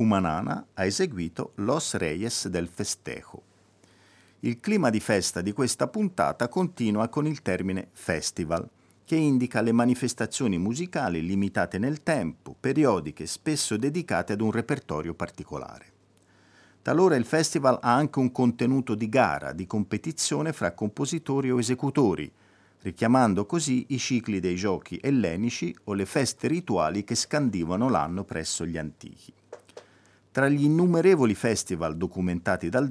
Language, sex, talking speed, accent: Italian, male, 130 wpm, native